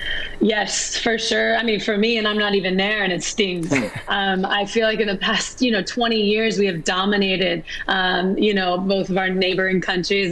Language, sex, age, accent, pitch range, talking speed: English, female, 20-39, American, 190-215 Hz, 215 wpm